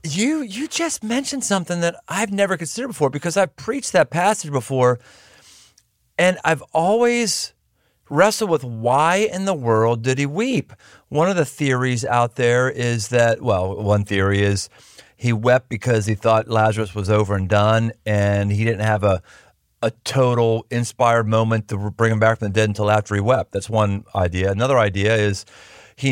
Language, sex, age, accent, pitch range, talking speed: English, male, 40-59, American, 110-165 Hz, 175 wpm